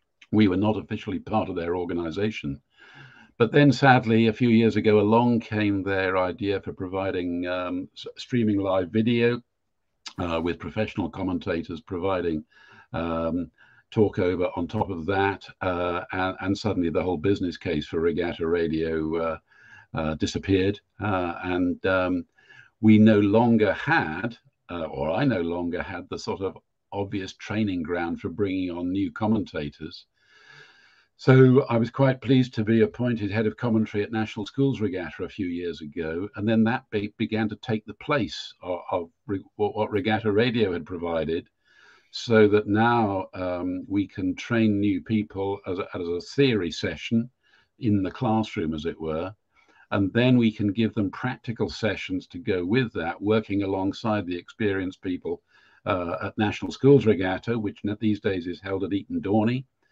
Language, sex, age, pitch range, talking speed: English, male, 50-69, 90-110 Hz, 160 wpm